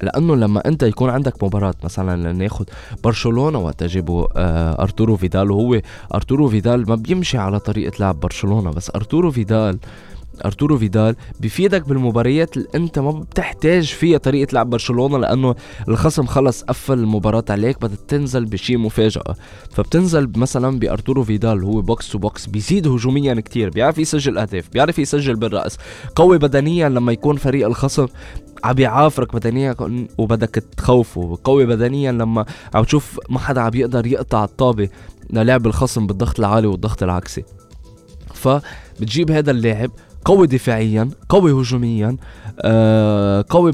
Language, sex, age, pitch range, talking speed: Arabic, male, 20-39, 100-135 Hz, 130 wpm